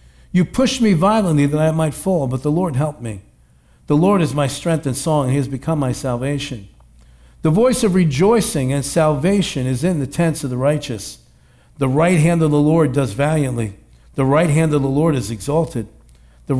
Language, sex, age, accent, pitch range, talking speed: English, male, 60-79, American, 125-165 Hz, 205 wpm